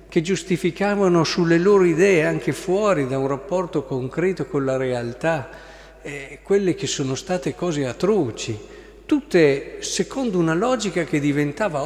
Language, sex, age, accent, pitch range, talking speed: Italian, male, 50-69, native, 140-195 Hz, 135 wpm